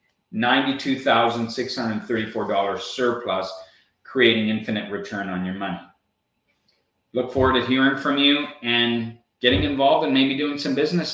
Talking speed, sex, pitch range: 115 wpm, male, 110-135 Hz